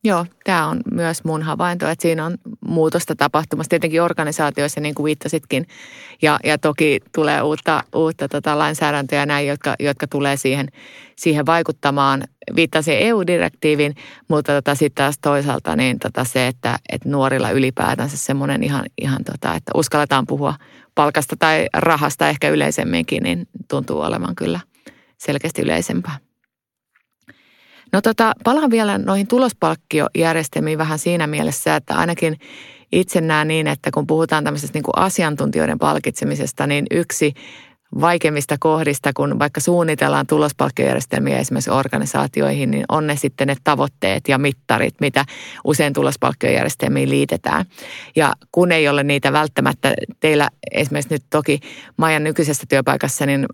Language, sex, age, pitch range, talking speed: Finnish, female, 30-49, 140-160 Hz, 140 wpm